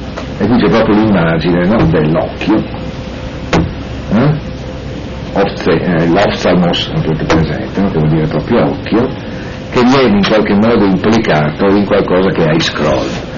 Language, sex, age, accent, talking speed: Italian, male, 60-79, native, 125 wpm